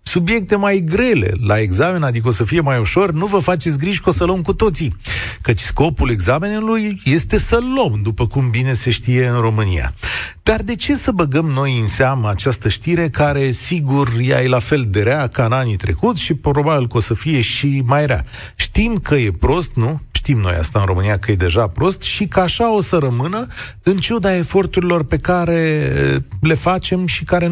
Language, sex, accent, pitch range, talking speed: Romanian, male, native, 110-160 Hz, 205 wpm